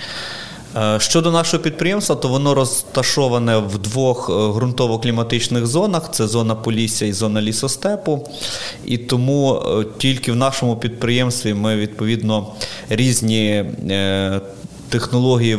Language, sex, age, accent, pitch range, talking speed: Ukrainian, male, 30-49, native, 115-135 Hz, 105 wpm